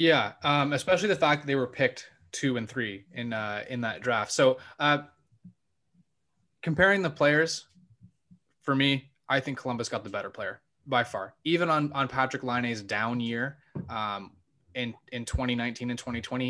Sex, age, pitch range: male, 20-39, 115-135 Hz